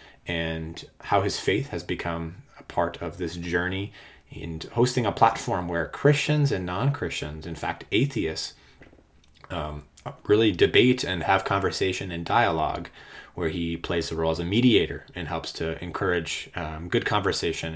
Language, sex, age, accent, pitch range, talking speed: English, male, 20-39, American, 85-125 Hz, 150 wpm